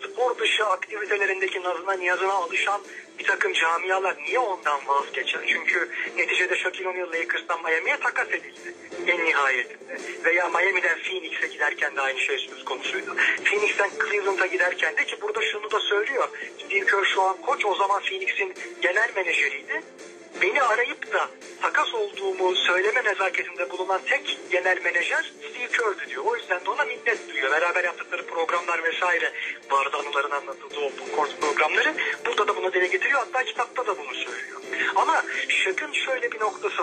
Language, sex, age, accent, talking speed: Turkish, male, 40-59, native, 150 wpm